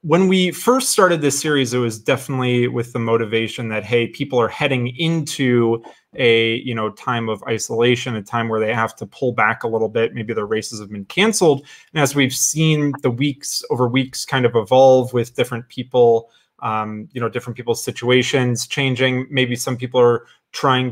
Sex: male